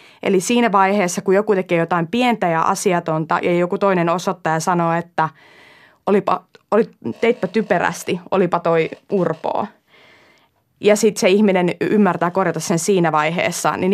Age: 20-39